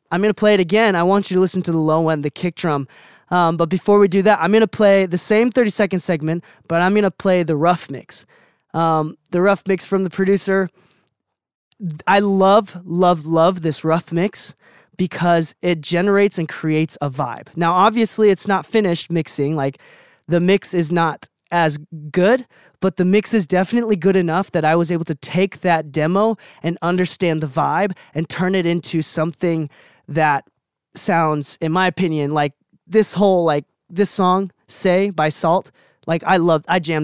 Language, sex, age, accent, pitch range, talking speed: English, male, 20-39, American, 160-195 Hz, 190 wpm